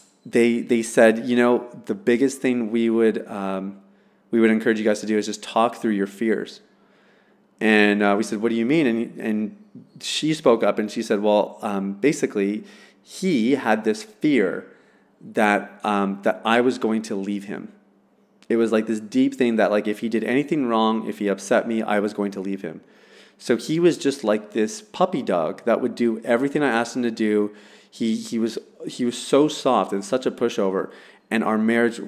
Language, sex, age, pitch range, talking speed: English, male, 30-49, 105-125 Hz, 205 wpm